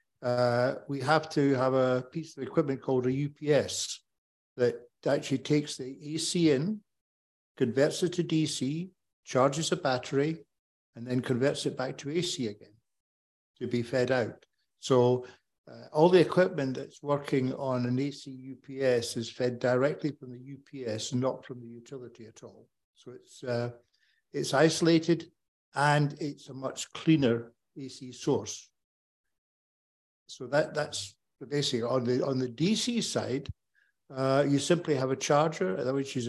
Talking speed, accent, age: 150 wpm, British, 60-79